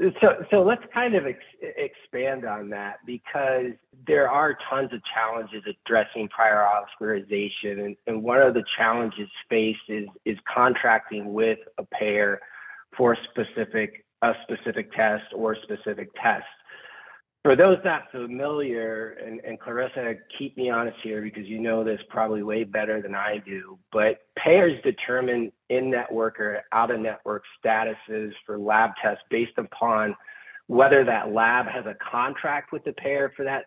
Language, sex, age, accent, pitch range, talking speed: English, male, 30-49, American, 110-130 Hz, 150 wpm